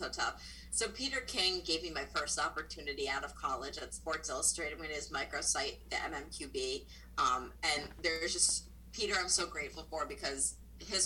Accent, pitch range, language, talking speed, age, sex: American, 145-180 Hz, English, 185 wpm, 30-49, female